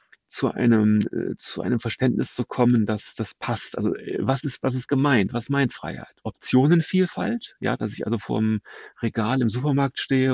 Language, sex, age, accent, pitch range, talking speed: German, male, 40-59, German, 105-140 Hz, 170 wpm